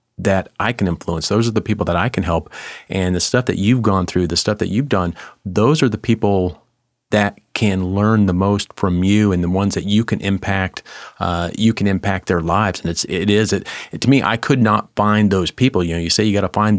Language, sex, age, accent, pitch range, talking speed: English, male, 40-59, American, 90-110 Hz, 245 wpm